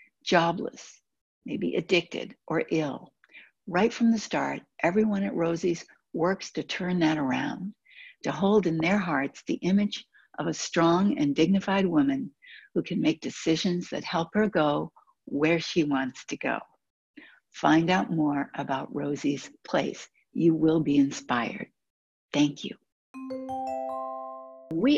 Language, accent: English, American